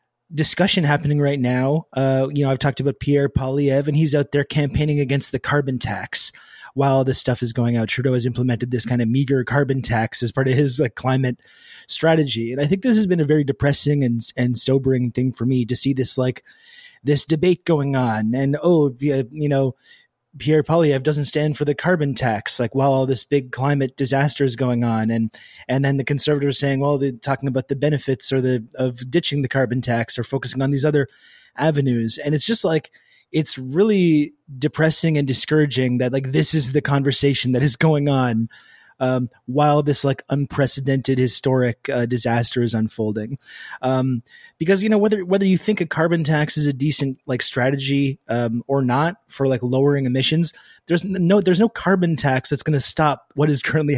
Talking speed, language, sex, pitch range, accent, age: 200 wpm, English, male, 130-150 Hz, American, 20-39